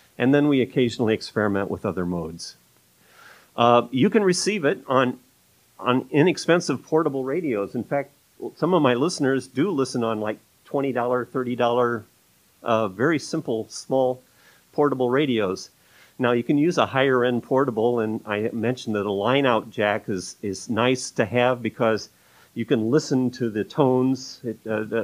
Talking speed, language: 150 wpm, English